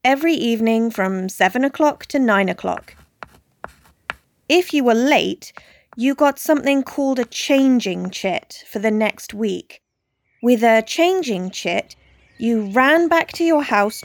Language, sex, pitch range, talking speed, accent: French, female, 215-290 Hz, 140 wpm, British